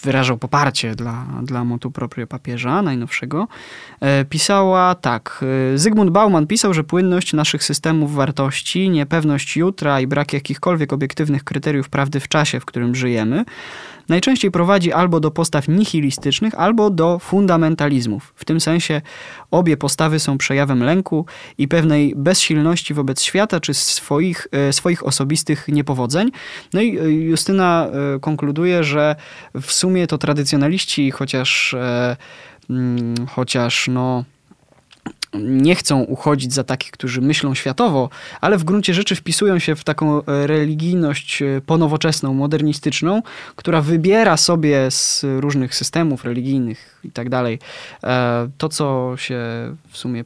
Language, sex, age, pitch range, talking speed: Polish, male, 20-39, 135-170 Hz, 135 wpm